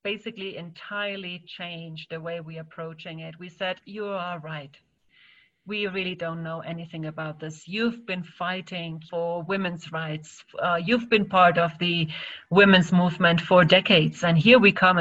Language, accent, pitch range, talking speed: English, German, 170-200 Hz, 160 wpm